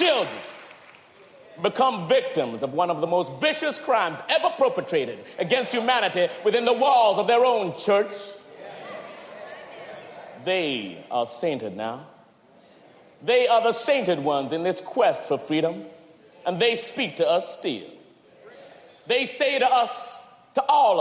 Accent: American